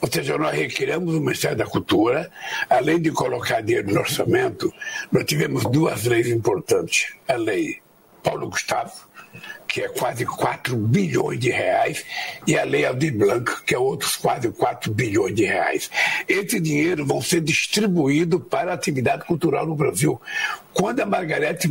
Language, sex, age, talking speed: Portuguese, male, 60-79, 160 wpm